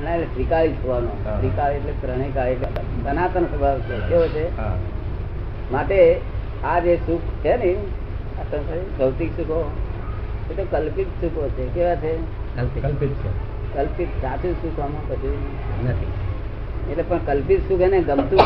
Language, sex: Gujarati, female